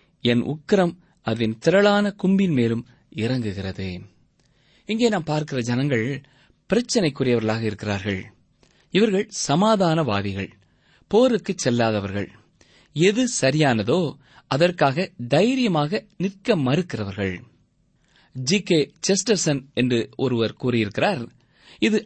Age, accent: 20-39, native